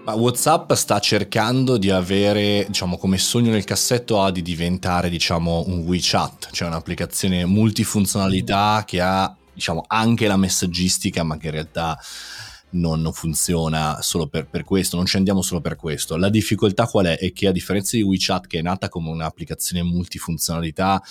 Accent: native